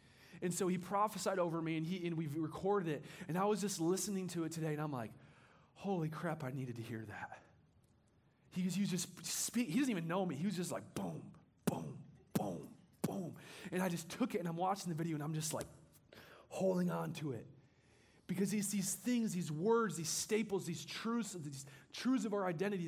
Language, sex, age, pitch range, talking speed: English, male, 30-49, 160-210 Hz, 210 wpm